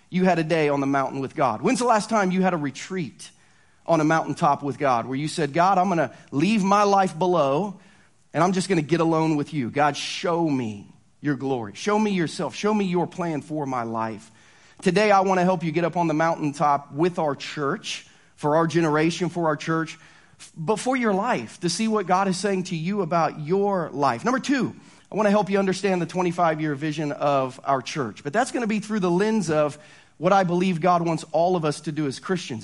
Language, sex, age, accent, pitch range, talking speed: English, male, 30-49, American, 145-185 Hz, 235 wpm